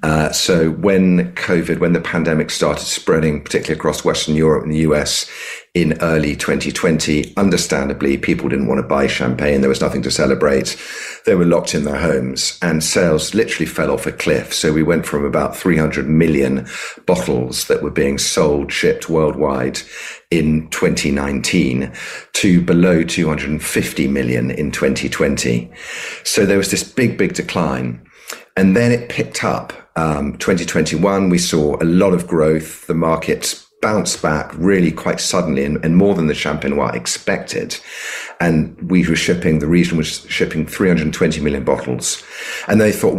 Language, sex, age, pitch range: English, male, 50-69, 70-85 Hz